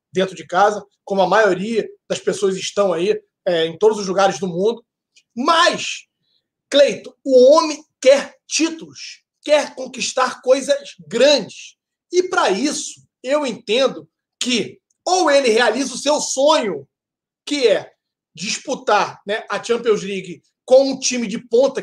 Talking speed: 135 wpm